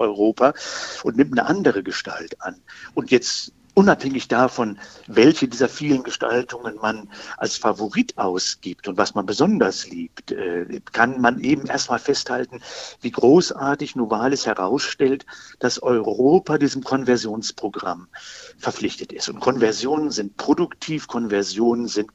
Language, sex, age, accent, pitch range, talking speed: German, male, 50-69, German, 110-140 Hz, 120 wpm